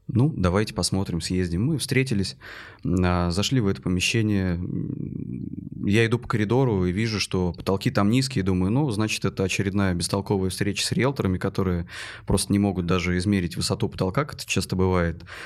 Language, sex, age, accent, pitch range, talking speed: Russian, male, 20-39, native, 95-115 Hz, 160 wpm